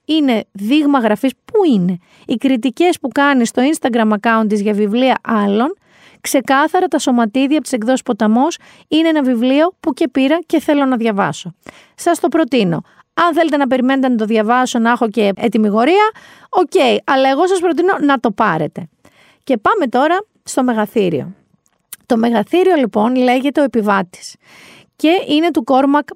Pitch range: 230-310 Hz